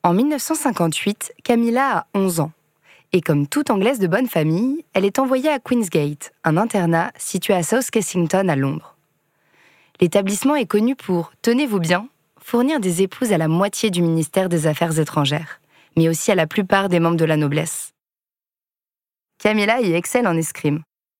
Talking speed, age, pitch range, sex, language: 165 wpm, 20-39, 160-225 Hz, female, French